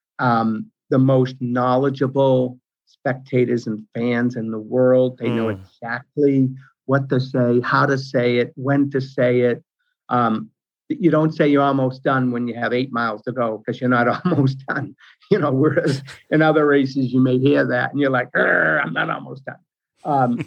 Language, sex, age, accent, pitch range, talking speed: English, male, 50-69, American, 120-135 Hz, 180 wpm